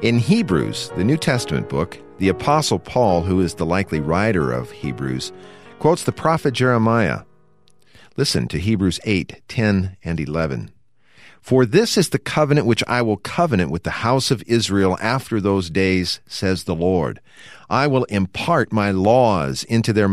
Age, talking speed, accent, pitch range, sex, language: 50-69, 160 wpm, American, 90-120 Hz, male, English